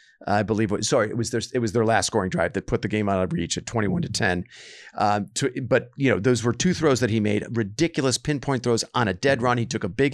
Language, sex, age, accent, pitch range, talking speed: English, male, 50-69, American, 105-130 Hz, 280 wpm